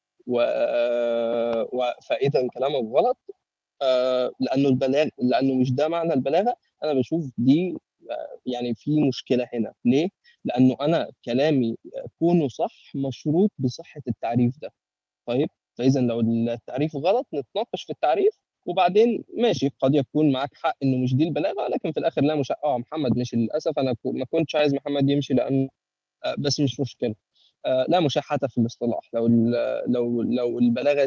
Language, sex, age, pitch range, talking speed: Arabic, male, 20-39, 120-150 Hz, 150 wpm